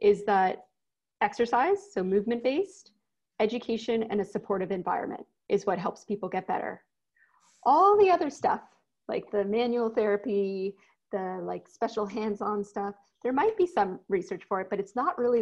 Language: English